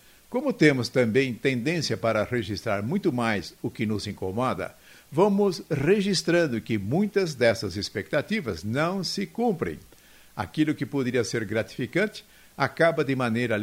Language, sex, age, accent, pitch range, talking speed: Portuguese, male, 60-79, Brazilian, 115-170 Hz, 130 wpm